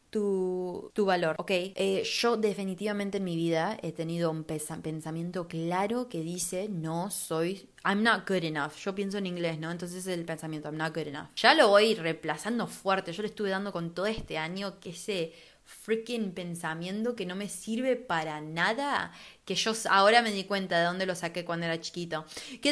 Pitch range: 175-250 Hz